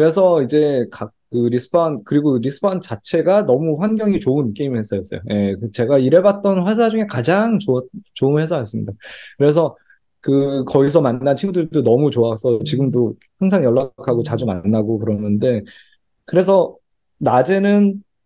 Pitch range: 120-190 Hz